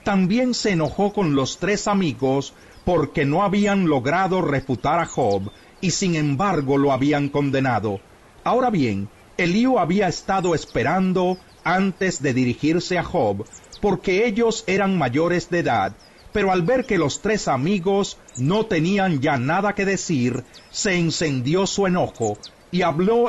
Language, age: Spanish, 40-59